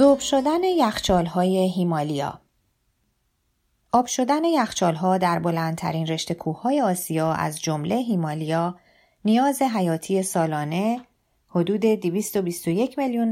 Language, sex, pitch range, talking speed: Persian, female, 165-215 Hz, 95 wpm